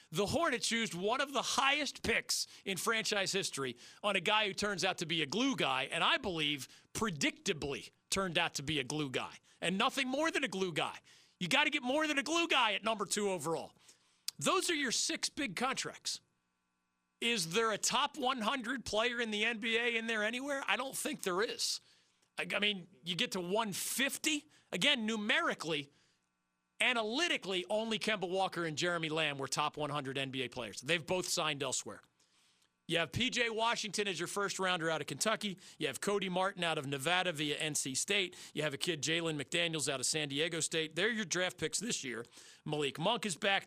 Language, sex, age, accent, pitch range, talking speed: English, male, 40-59, American, 155-230 Hz, 195 wpm